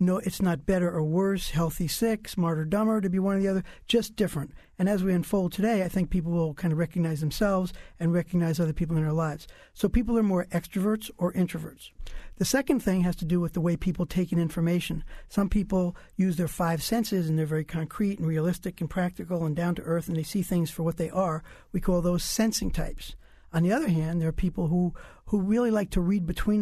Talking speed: 230 wpm